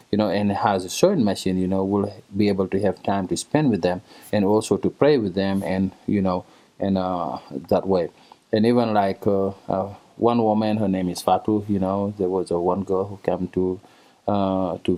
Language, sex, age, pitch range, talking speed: English, male, 20-39, 95-105 Hz, 220 wpm